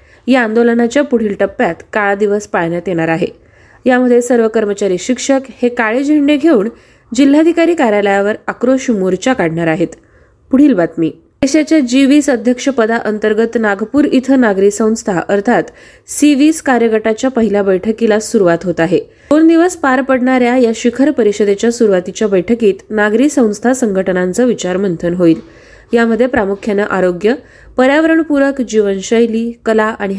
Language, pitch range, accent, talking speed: Marathi, 200-260 Hz, native, 130 wpm